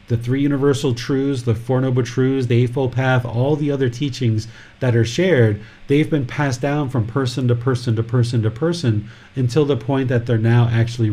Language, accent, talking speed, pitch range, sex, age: English, American, 200 wpm, 115-140 Hz, male, 30-49